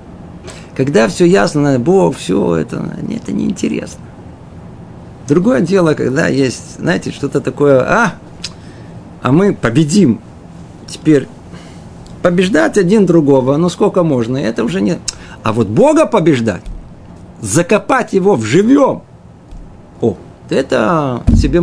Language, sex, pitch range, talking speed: Russian, male, 135-190 Hz, 110 wpm